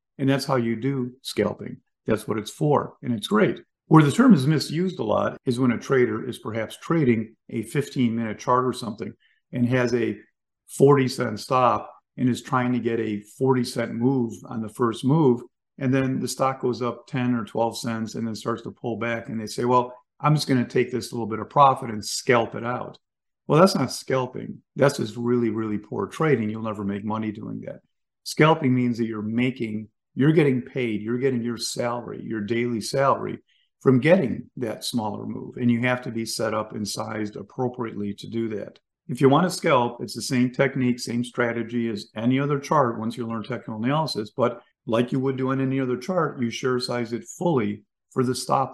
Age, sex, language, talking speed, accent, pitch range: 50-69, male, English, 205 wpm, American, 110-130 Hz